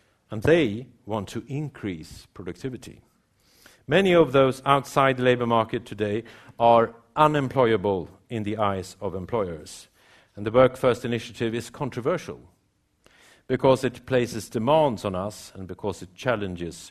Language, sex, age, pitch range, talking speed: English, male, 50-69, 100-130 Hz, 135 wpm